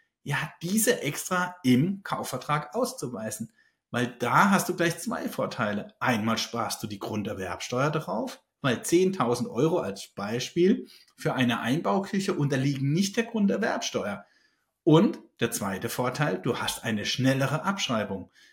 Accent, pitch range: German, 120-180 Hz